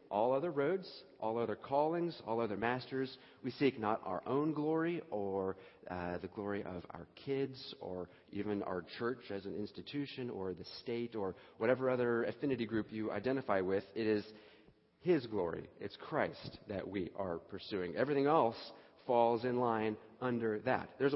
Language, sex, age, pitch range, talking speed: English, male, 40-59, 95-130 Hz, 165 wpm